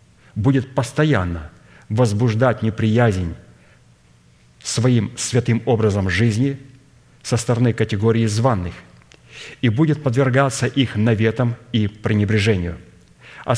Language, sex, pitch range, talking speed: Russian, male, 100-120 Hz, 90 wpm